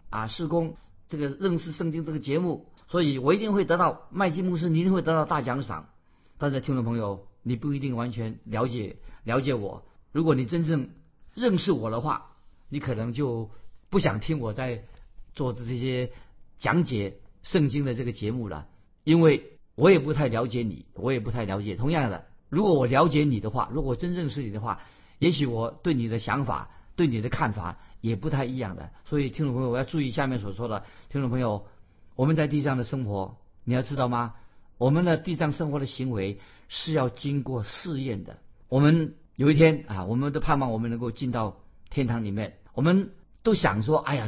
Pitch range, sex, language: 110-155 Hz, male, Chinese